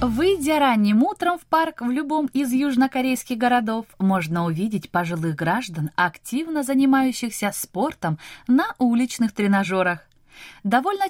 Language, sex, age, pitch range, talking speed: Russian, female, 20-39, 170-275 Hz, 115 wpm